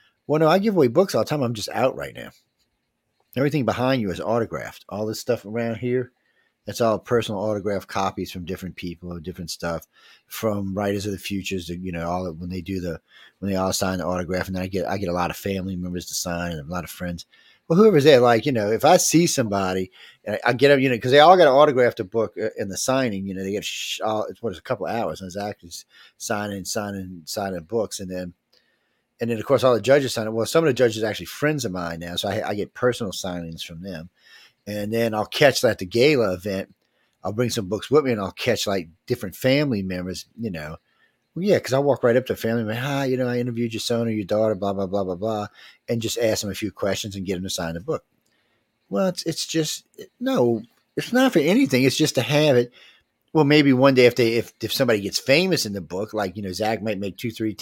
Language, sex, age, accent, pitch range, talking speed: English, male, 40-59, American, 95-125 Hz, 260 wpm